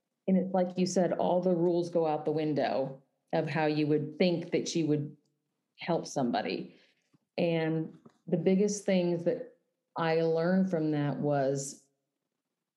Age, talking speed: 40-59, 150 wpm